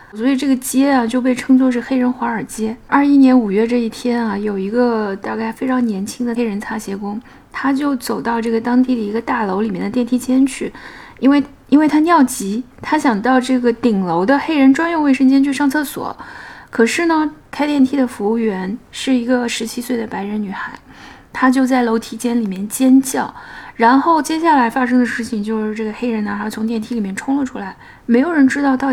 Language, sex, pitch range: Chinese, female, 220-265 Hz